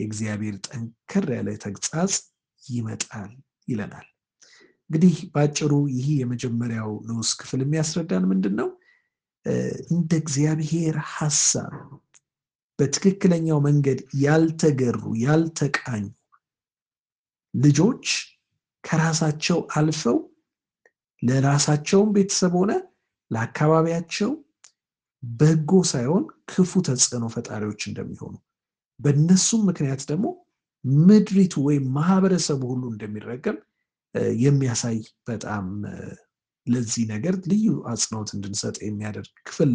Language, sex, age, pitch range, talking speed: Amharic, male, 60-79, 120-180 Hz, 75 wpm